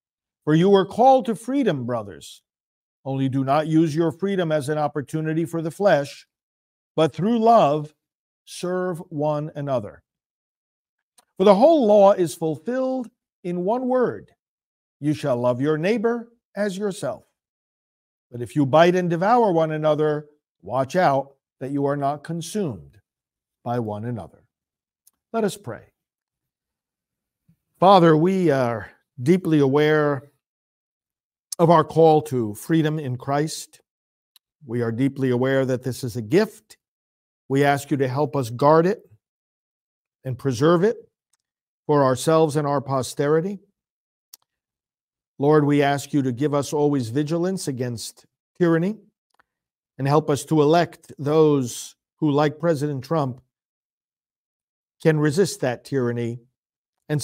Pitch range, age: 135-175 Hz, 50-69